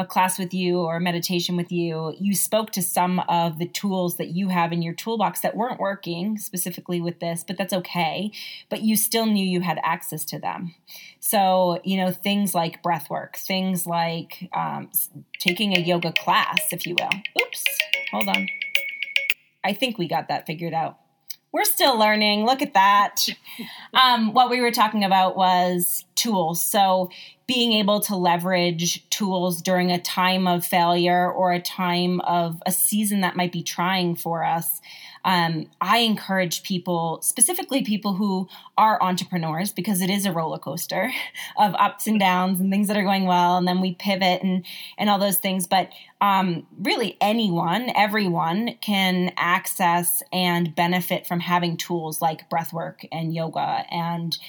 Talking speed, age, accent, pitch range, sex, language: 170 wpm, 30-49, American, 175-200 Hz, female, English